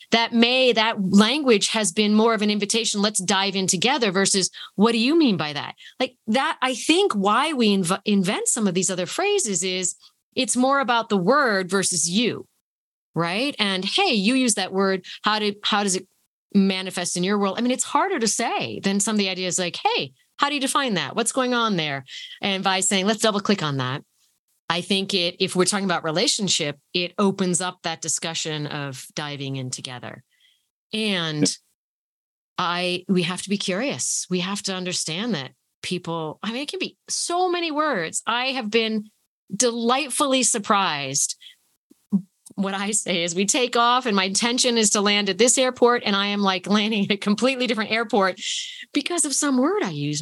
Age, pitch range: 30-49, 185-245 Hz